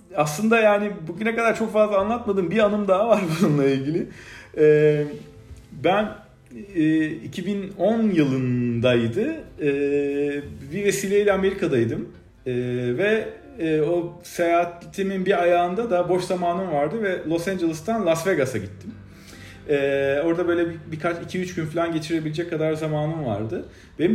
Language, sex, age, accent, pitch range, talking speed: Turkish, male, 40-59, native, 125-190 Hz, 115 wpm